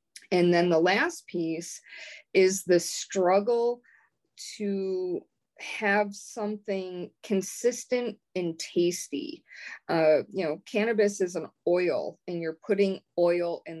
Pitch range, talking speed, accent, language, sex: 170-220 Hz, 115 wpm, American, English, female